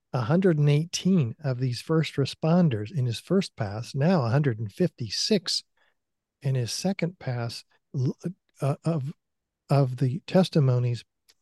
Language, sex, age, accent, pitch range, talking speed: English, male, 50-69, American, 125-160 Hz, 105 wpm